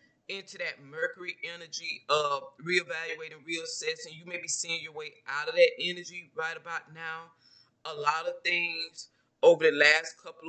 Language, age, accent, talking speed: English, 20-39, American, 160 wpm